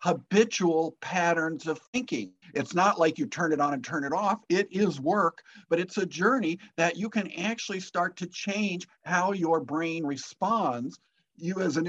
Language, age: English, 50-69